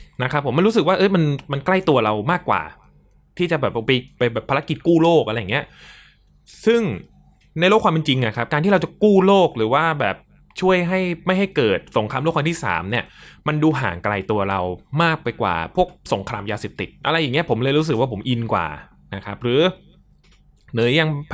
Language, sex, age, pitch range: Thai, male, 20-39, 115-160 Hz